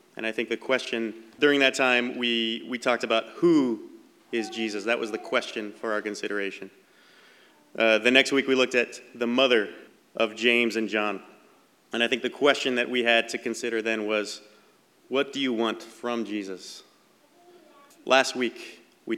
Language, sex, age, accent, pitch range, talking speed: English, male, 30-49, American, 110-130 Hz, 175 wpm